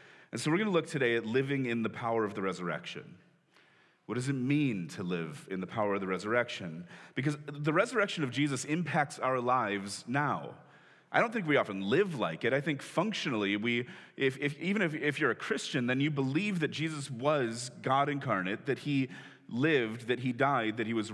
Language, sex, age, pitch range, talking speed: English, male, 30-49, 115-150 Hz, 205 wpm